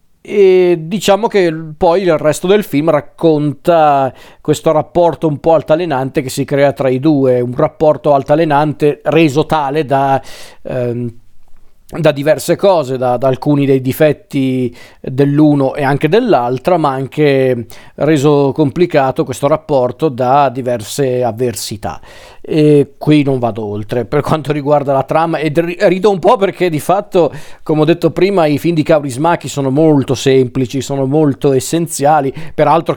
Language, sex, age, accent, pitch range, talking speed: Italian, male, 40-59, native, 135-160 Hz, 145 wpm